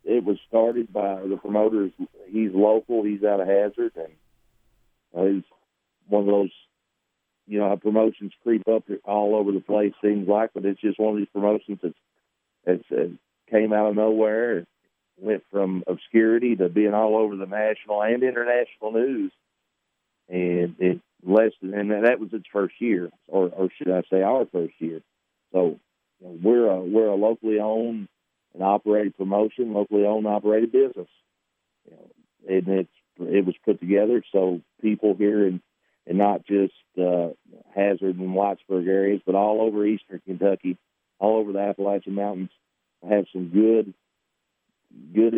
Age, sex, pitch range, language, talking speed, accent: 50-69, male, 95-110 Hz, English, 165 wpm, American